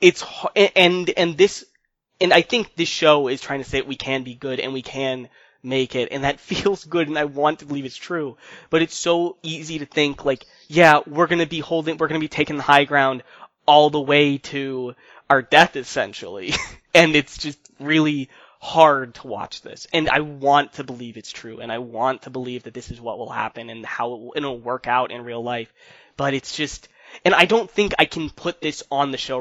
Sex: male